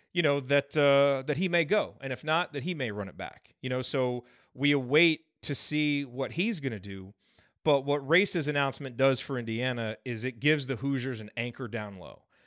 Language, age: English, 30-49